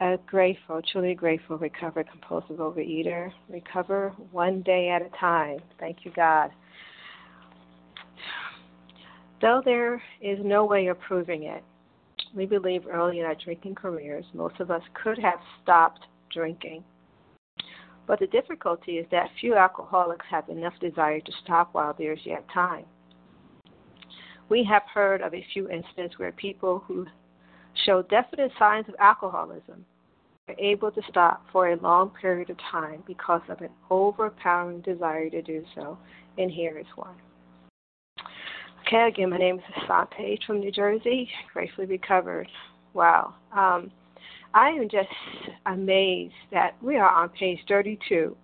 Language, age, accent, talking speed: English, 50-69, American, 145 wpm